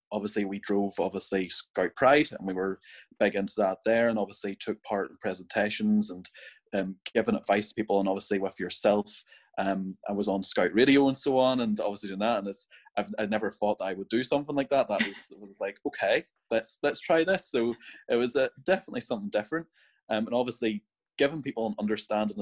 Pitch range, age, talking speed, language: 100-115 Hz, 20-39, 210 wpm, English